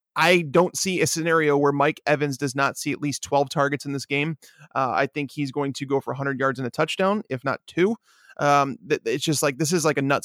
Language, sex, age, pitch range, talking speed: English, male, 20-39, 130-155 Hz, 250 wpm